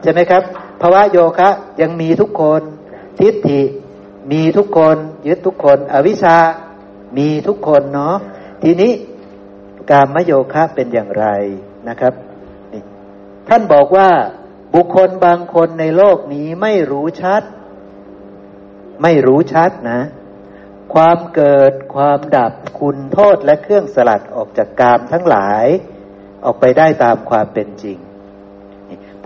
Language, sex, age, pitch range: Thai, male, 60-79, 100-165 Hz